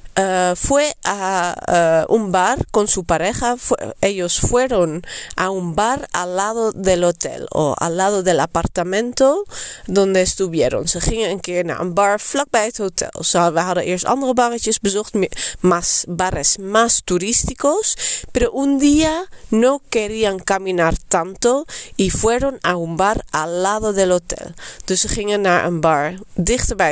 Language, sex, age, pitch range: Dutch, female, 30-49, 180-240 Hz